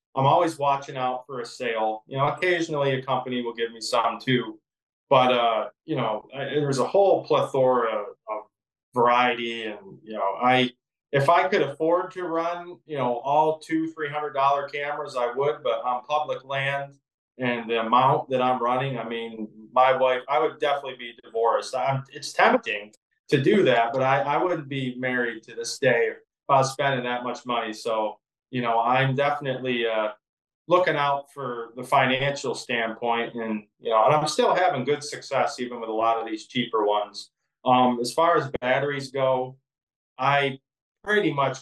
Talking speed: 185 wpm